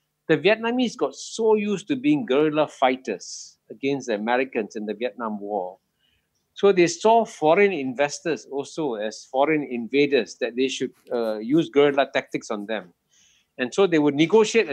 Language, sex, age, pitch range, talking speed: Indonesian, male, 60-79, 155-240 Hz, 160 wpm